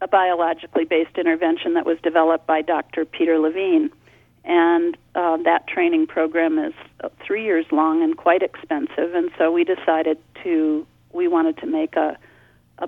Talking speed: 155 wpm